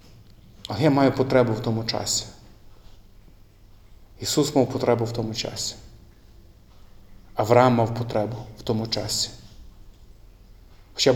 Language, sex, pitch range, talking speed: Ukrainian, male, 105-140 Hz, 110 wpm